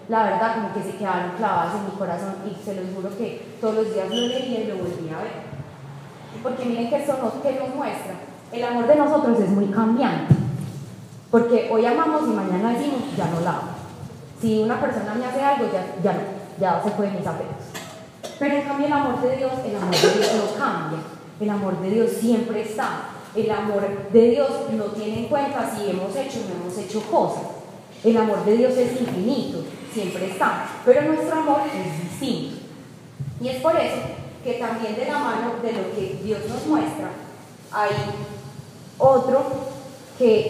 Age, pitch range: 20-39, 200-255 Hz